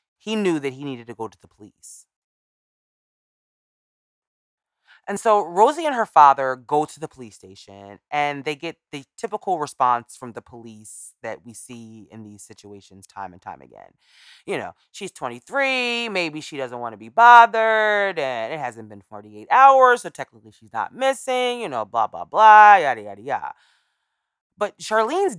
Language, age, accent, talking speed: English, 20-39, American, 170 wpm